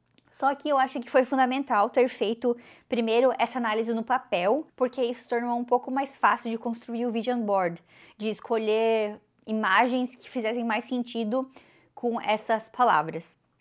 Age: 20-39